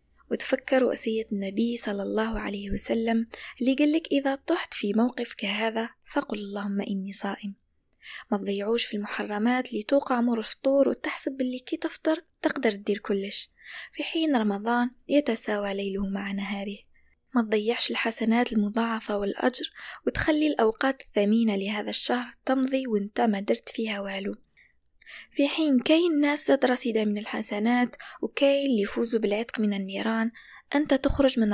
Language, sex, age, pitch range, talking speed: Arabic, female, 20-39, 205-255 Hz, 140 wpm